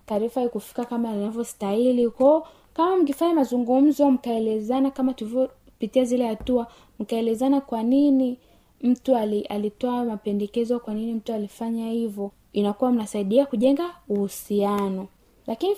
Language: Swahili